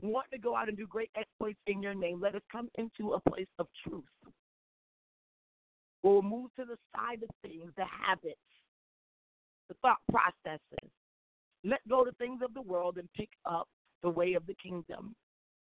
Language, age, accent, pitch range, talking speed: English, 40-59, American, 185-230 Hz, 175 wpm